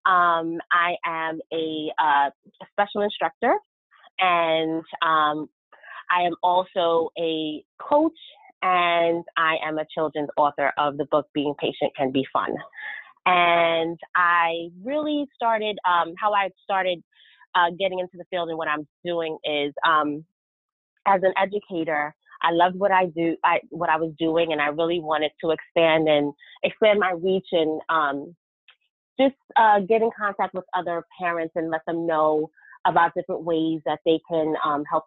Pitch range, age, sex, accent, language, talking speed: 160-190 Hz, 30-49, female, American, English, 155 wpm